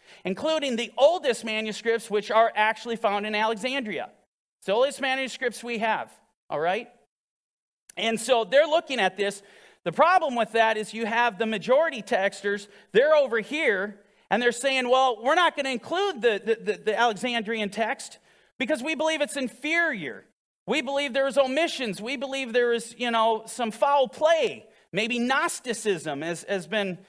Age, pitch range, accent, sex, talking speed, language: 40-59, 205-265 Hz, American, male, 165 wpm, English